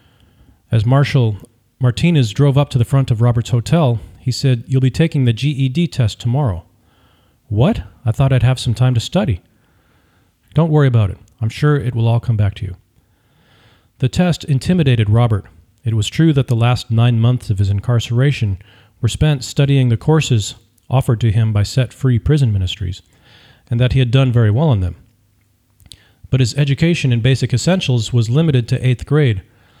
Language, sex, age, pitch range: English, male, 40-59, 105-130 Hz